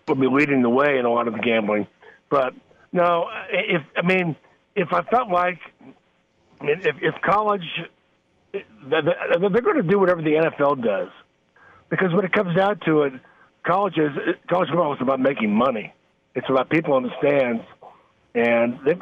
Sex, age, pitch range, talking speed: male, 50-69, 135-180 Hz, 175 wpm